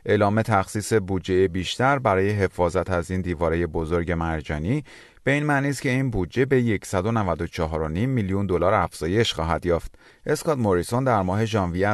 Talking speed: 150 wpm